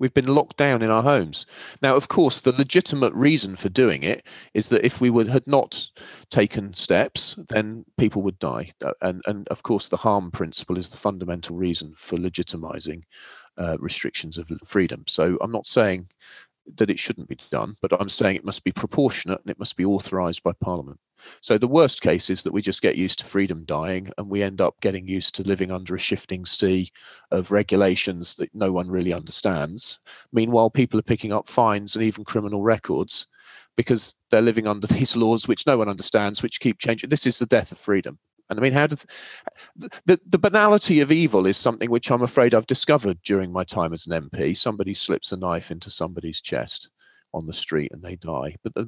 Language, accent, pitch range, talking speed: English, British, 90-125 Hz, 205 wpm